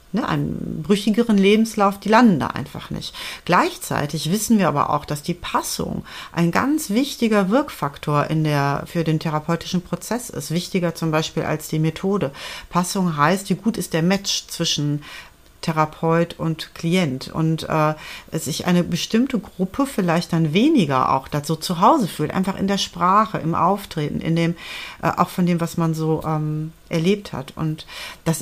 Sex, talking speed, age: female, 170 wpm, 40-59